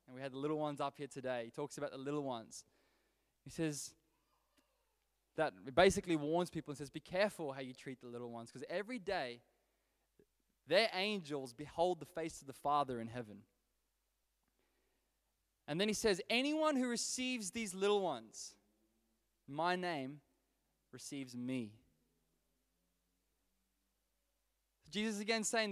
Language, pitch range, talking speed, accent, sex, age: English, 130-180 Hz, 140 wpm, Australian, male, 20-39